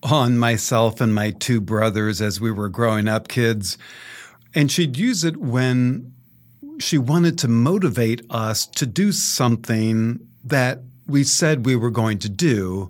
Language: English